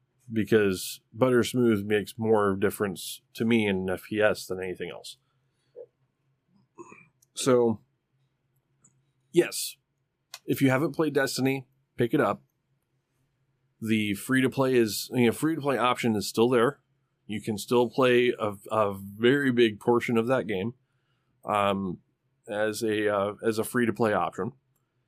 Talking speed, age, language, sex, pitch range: 140 wpm, 20-39, English, male, 105-135 Hz